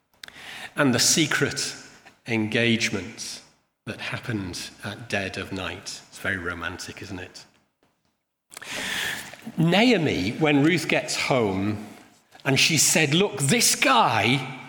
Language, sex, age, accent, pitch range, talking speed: English, male, 40-59, British, 145-195 Hz, 105 wpm